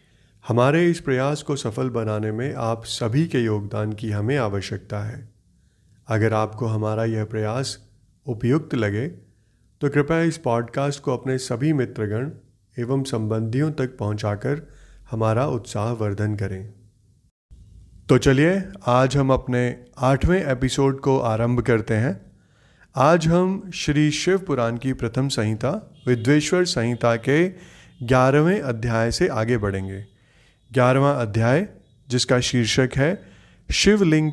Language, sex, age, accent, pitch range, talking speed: Hindi, male, 30-49, native, 110-145 Hz, 125 wpm